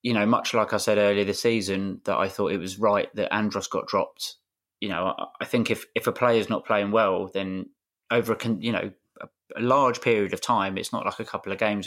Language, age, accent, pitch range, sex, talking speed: English, 20-39, British, 100-115 Hz, male, 245 wpm